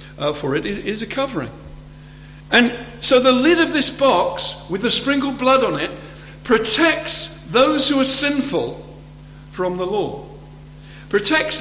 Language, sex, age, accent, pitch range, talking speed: English, male, 50-69, British, 150-215 Hz, 145 wpm